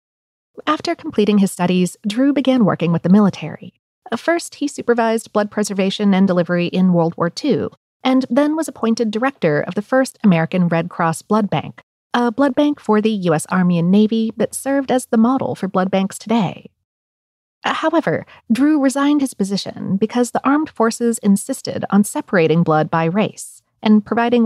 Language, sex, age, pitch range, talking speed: English, female, 40-59, 180-245 Hz, 170 wpm